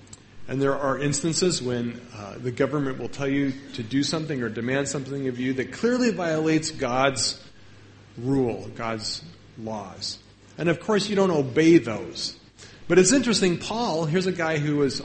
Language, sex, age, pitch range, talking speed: English, male, 40-59, 115-160 Hz, 170 wpm